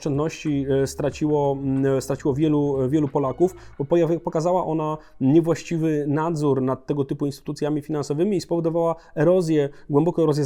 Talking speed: 115 wpm